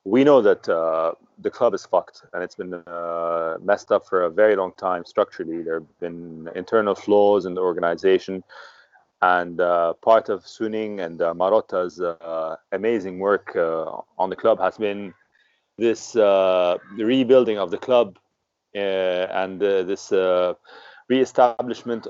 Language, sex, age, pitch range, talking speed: English, male, 30-49, 90-115 Hz, 155 wpm